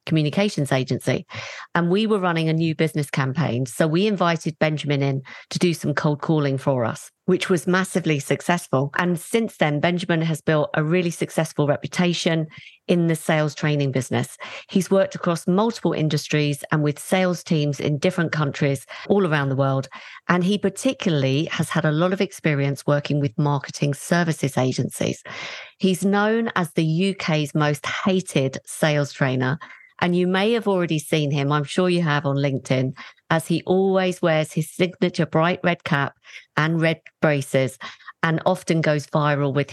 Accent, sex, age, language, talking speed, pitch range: British, female, 40-59, English, 165 wpm, 145-180 Hz